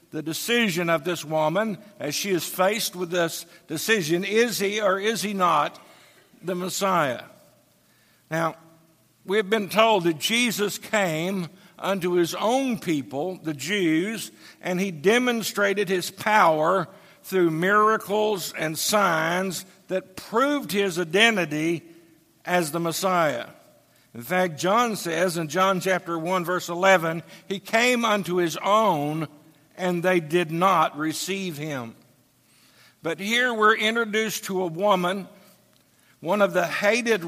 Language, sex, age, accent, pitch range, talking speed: English, male, 60-79, American, 170-210 Hz, 130 wpm